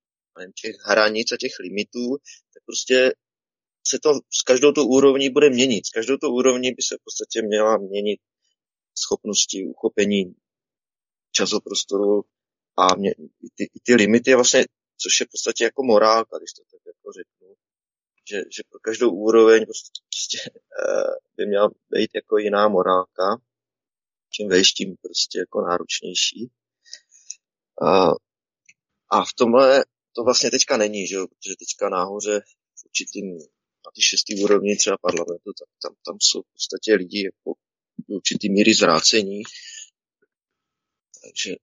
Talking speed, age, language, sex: 140 wpm, 20-39, Czech, male